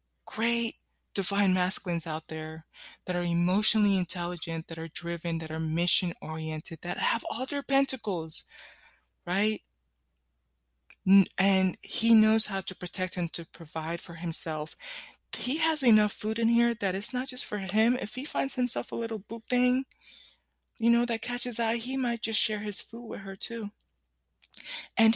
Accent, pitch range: American, 160-220 Hz